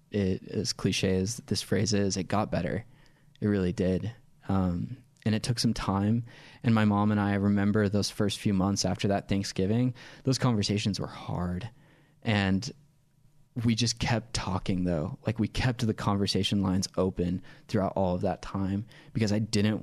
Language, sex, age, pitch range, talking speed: English, male, 20-39, 100-120 Hz, 175 wpm